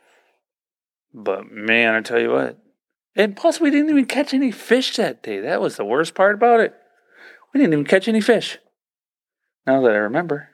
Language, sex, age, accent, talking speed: English, male, 40-59, American, 190 wpm